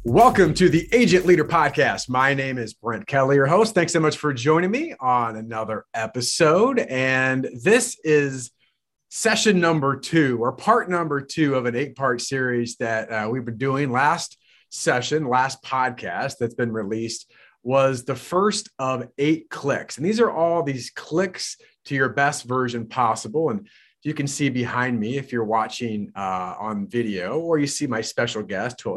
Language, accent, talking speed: English, American, 175 wpm